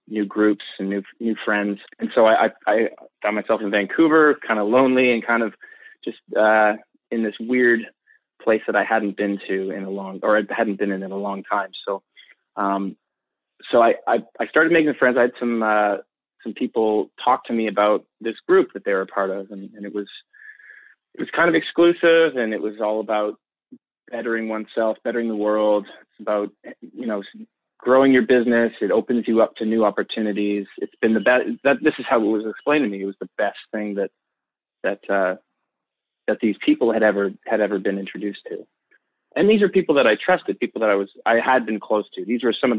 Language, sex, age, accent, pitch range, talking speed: English, male, 20-39, American, 105-125 Hz, 215 wpm